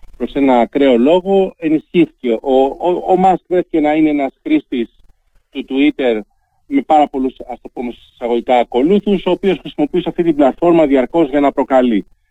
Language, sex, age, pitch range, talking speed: Greek, male, 40-59, 120-170 Hz, 145 wpm